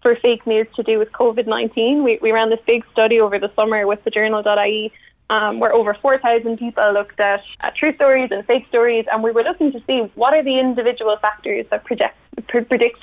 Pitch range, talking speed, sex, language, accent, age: 220-260 Hz, 215 wpm, female, English, Irish, 20-39